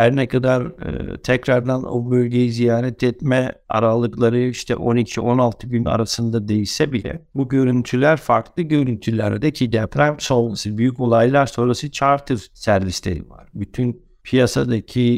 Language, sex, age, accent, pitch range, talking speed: Turkish, male, 60-79, native, 110-135 Hz, 125 wpm